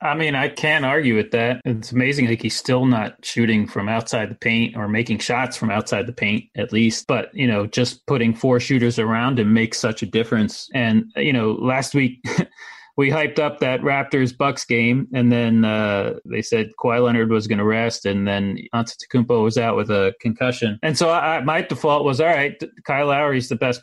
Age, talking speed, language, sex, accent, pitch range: 30-49, 205 wpm, English, male, American, 115-145 Hz